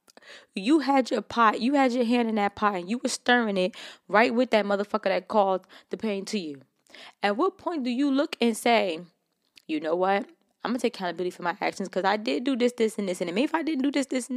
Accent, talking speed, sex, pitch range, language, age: American, 255 wpm, female, 190-250 Hz, English, 20-39